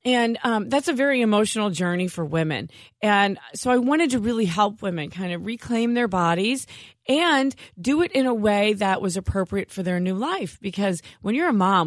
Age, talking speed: 30-49, 200 wpm